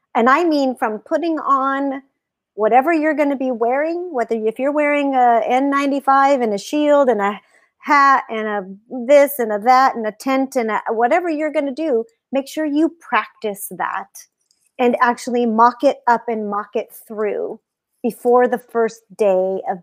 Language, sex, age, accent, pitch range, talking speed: English, female, 40-59, American, 210-275 Hz, 175 wpm